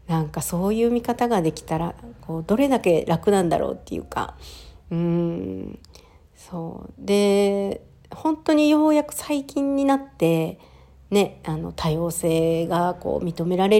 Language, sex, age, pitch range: Japanese, female, 50-69, 160-205 Hz